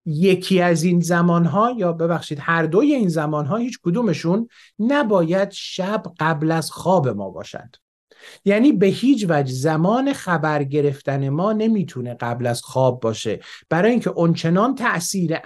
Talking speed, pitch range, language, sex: 150 wpm, 140-195 Hz, Persian, male